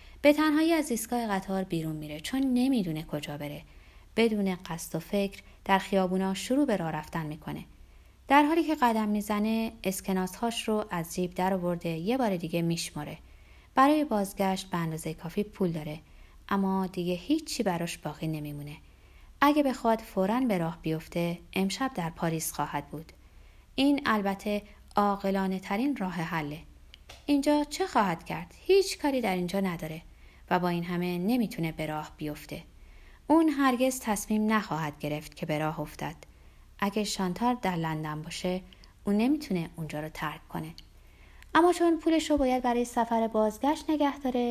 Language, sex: Persian, female